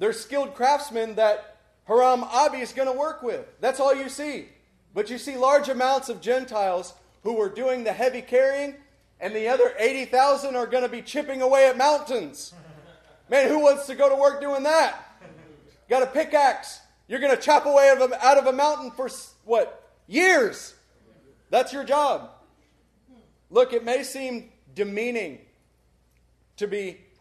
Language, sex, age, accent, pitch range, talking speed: English, male, 30-49, American, 210-275 Hz, 165 wpm